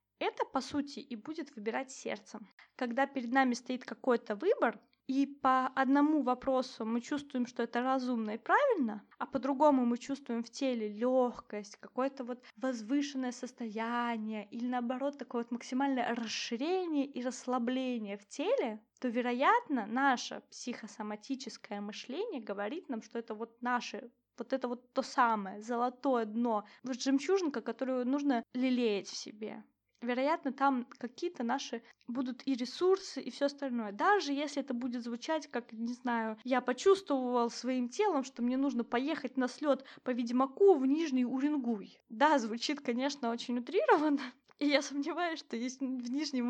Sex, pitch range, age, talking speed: female, 235-275 Hz, 20-39, 150 wpm